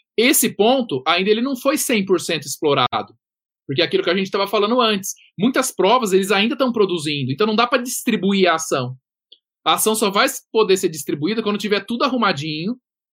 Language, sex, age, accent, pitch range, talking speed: Portuguese, male, 20-39, Brazilian, 165-230 Hz, 185 wpm